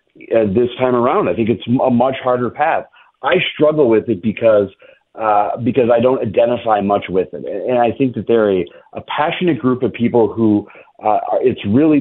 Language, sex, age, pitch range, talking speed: English, male, 40-59, 105-125 Hz, 195 wpm